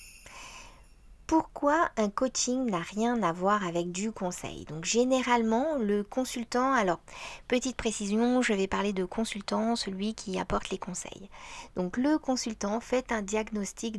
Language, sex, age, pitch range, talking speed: French, female, 40-59, 180-240 Hz, 140 wpm